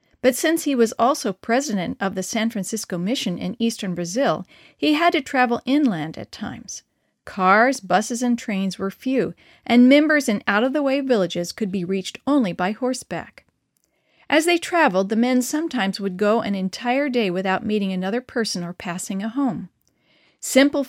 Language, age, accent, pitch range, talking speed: English, 40-59, American, 190-255 Hz, 165 wpm